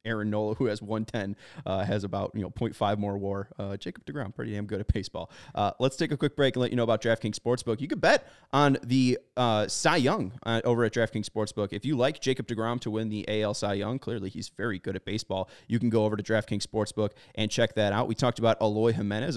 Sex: male